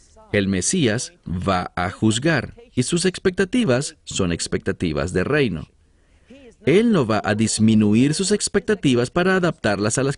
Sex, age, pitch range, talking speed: male, 40-59, 100-170 Hz, 135 wpm